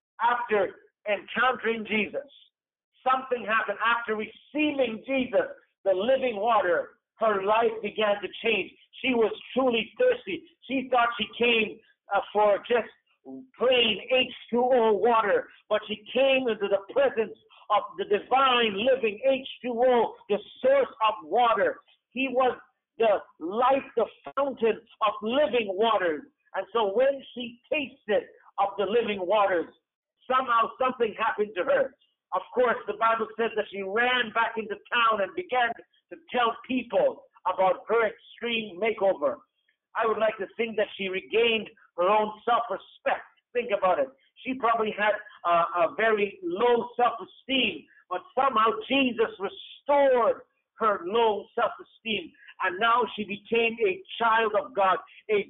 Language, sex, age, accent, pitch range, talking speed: English, male, 50-69, American, 210-260 Hz, 135 wpm